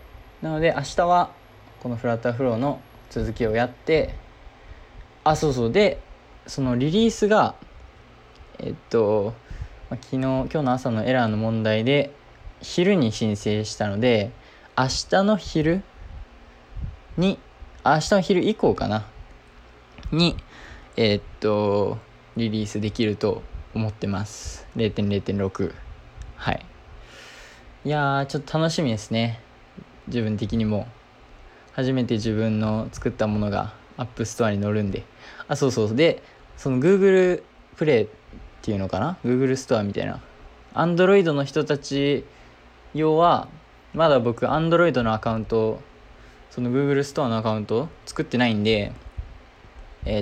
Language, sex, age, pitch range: Japanese, male, 20-39, 105-140 Hz